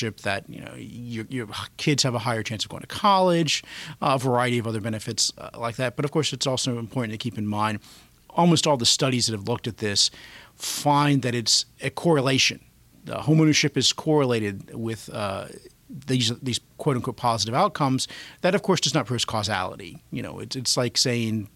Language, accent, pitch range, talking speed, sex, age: English, American, 110-135 Hz, 195 wpm, male, 40-59